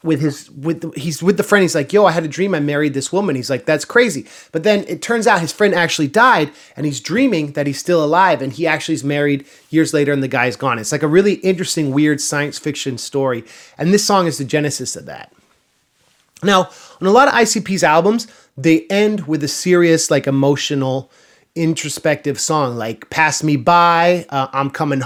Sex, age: male, 30-49